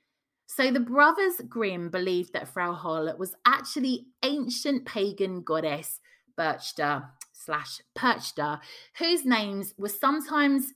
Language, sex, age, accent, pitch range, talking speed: English, female, 30-49, British, 175-275 Hz, 110 wpm